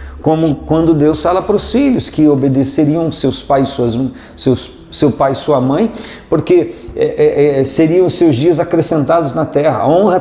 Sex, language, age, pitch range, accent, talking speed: male, Portuguese, 50-69, 115-160 Hz, Brazilian, 165 wpm